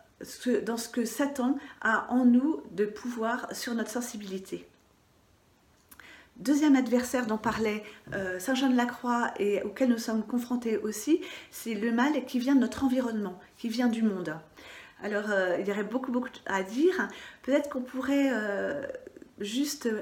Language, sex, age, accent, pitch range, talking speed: French, female, 40-59, French, 215-265 Hz, 140 wpm